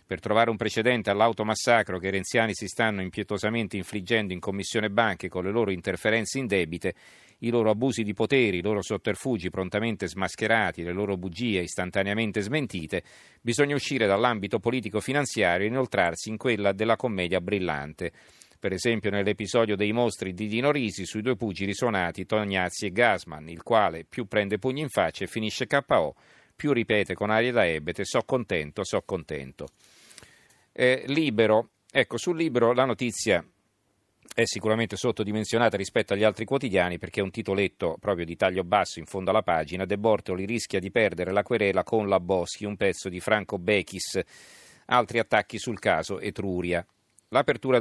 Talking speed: 160 wpm